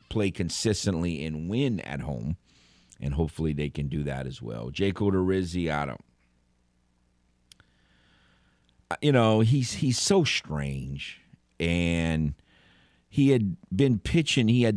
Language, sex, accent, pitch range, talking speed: English, male, American, 75-95 Hz, 125 wpm